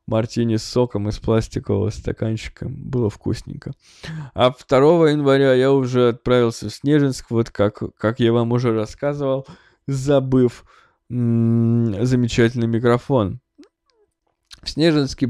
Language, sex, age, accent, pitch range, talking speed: Russian, male, 20-39, native, 115-135 Hz, 105 wpm